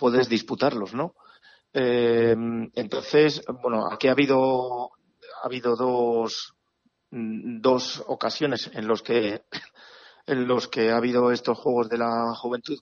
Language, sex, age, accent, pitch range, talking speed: Spanish, male, 40-59, Spanish, 110-135 Hz, 125 wpm